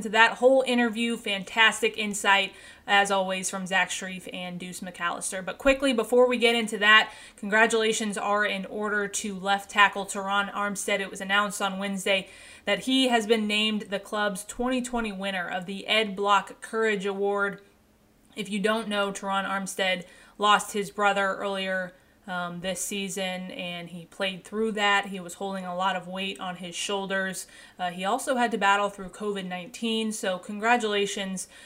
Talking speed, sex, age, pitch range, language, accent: 165 wpm, female, 20-39, 190-215 Hz, English, American